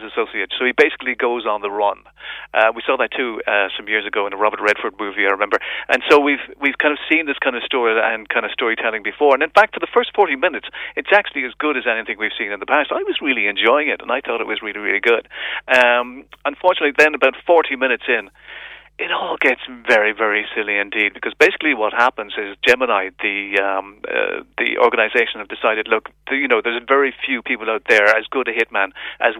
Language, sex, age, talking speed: English, male, 40-59, 230 wpm